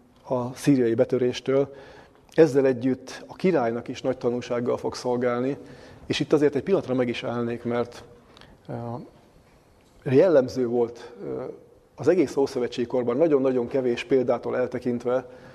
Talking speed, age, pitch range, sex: 115 wpm, 30-49, 120-135 Hz, male